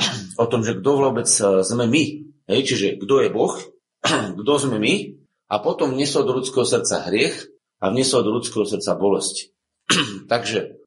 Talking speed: 155 wpm